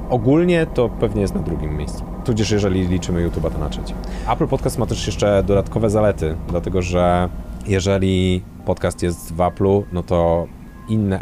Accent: native